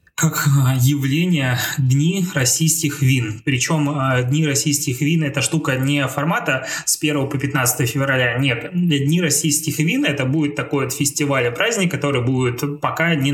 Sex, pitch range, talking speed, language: male, 125-150 Hz, 150 wpm, Russian